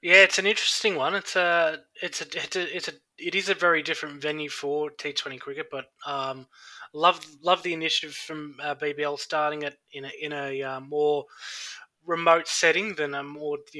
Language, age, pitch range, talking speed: English, 20-39, 135-160 Hz, 200 wpm